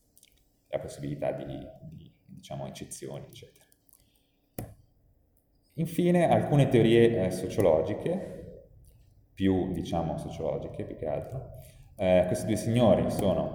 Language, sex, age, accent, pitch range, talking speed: Italian, male, 30-49, native, 85-120 Hz, 100 wpm